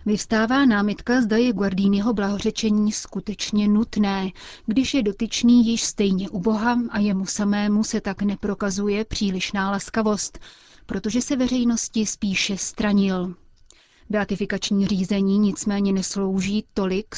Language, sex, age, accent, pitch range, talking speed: Czech, female, 30-49, native, 195-215 Hz, 120 wpm